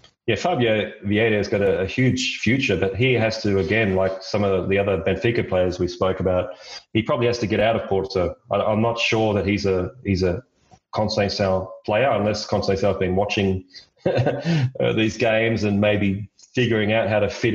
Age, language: 30-49, English